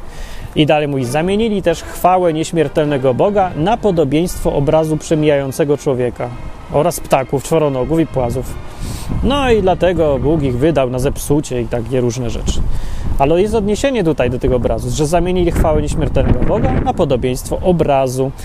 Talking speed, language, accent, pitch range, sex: 145 wpm, Polish, native, 125-170 Hz, male